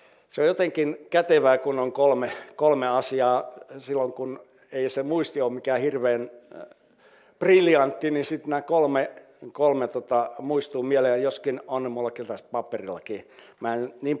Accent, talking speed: native, 150 wpm